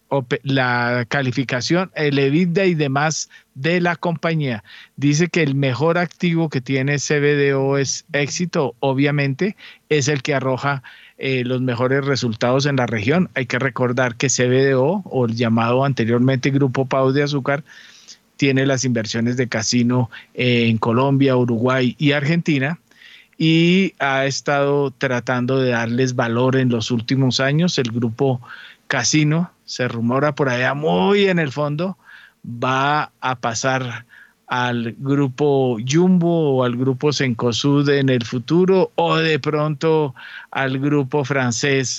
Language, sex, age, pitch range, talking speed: Spanish, male, 40-59, 125-150 Hz, 135 wpm